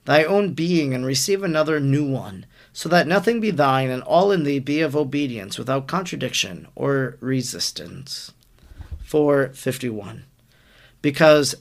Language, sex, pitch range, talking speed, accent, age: English, male, 130-170 Hz, 135 wpm, American, 40-59